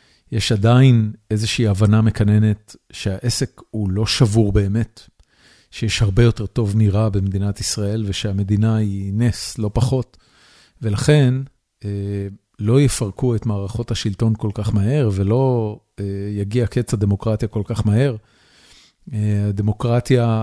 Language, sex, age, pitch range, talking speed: Hebrew, male, 40-59, 105-120 Hz, 115 wpm